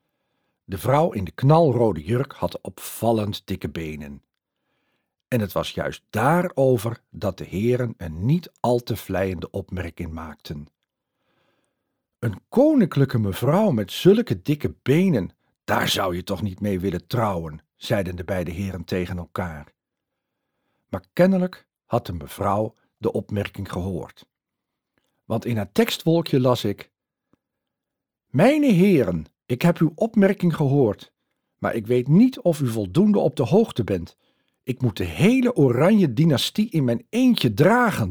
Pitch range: 100-165 Hz